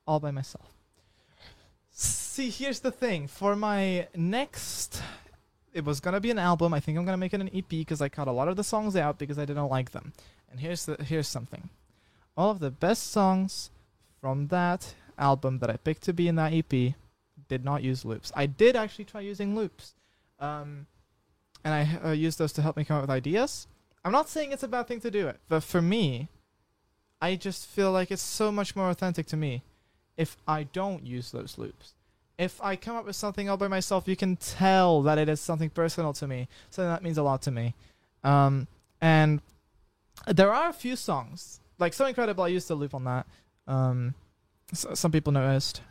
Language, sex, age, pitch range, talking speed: Slovak, male, 20-39, 140-190 Hz, 210 wpm